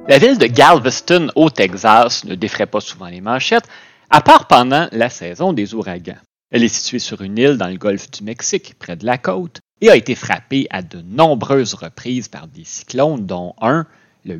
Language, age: French, 30-49